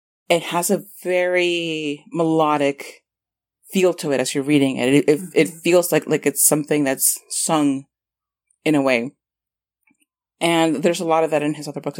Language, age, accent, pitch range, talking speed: English, 30-49, American, 145-175 Hz, 175 wpm